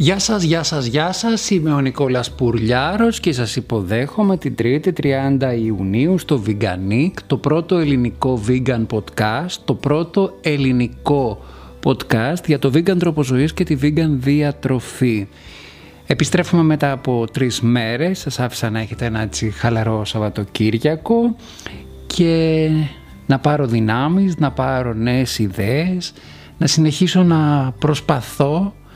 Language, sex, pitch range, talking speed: Greek, male, 115-155 Hz, 125 wpm